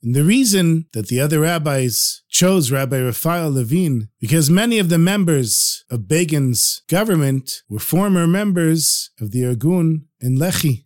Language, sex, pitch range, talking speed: English, male, 125-175 Hz, 150 wpm